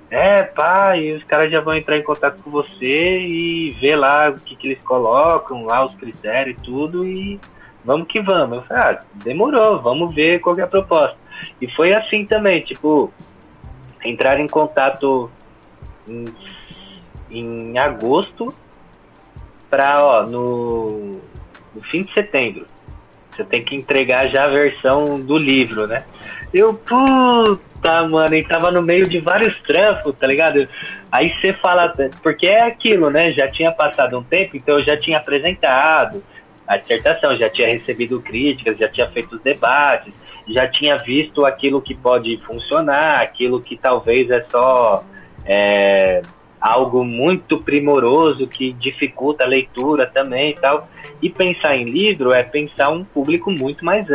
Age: 20-39